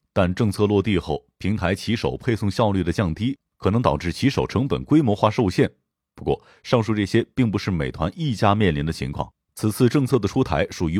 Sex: male